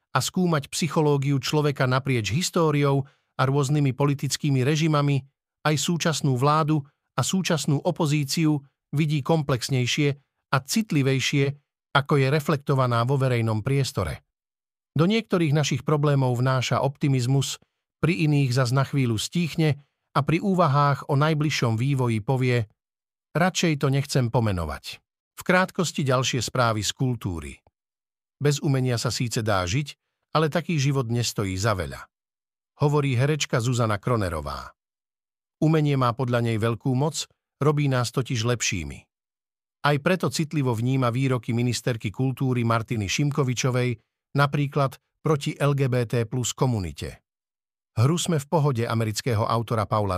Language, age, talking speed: Slovak, 50-69, 125 wpm